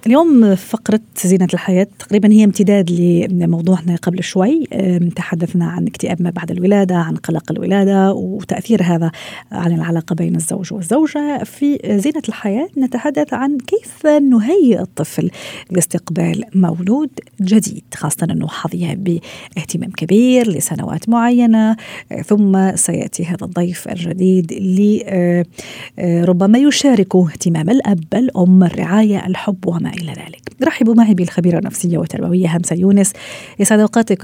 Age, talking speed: 40-59, 125 wpm